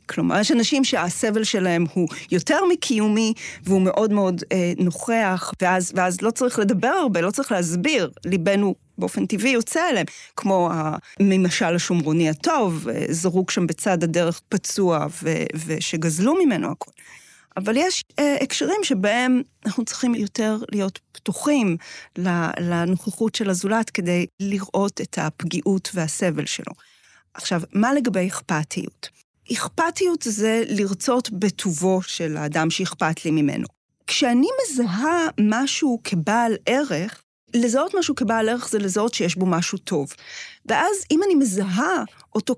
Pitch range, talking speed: 180-250 Hz, 130 wpm